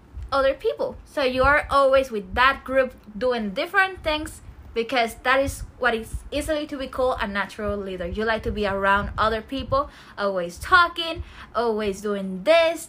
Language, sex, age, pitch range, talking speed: English, female, 20-39, 225-295 Hz, 170 wpm